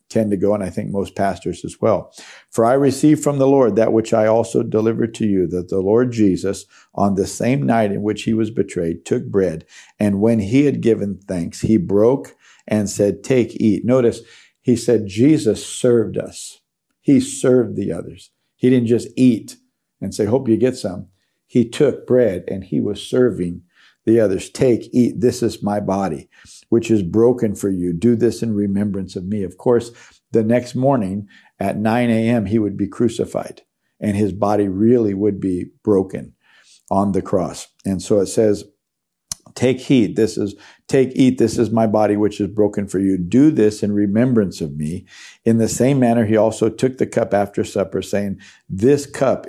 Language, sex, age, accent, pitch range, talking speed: English, male, 50-69, American, 100-120 Hz, 190 wpm